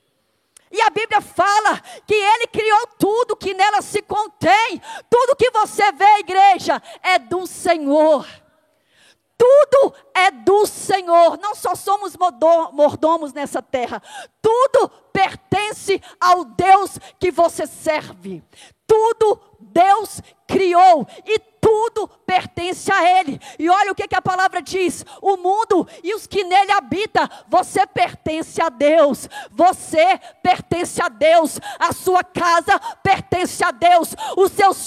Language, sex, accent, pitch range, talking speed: Portuguese, female, Brazilian, 325-405 Hz, 135 wpm